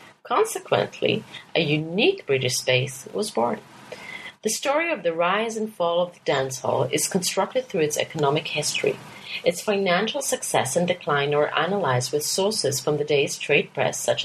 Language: English